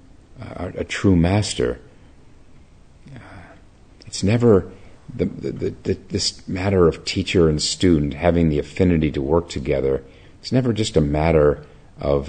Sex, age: male, 50-69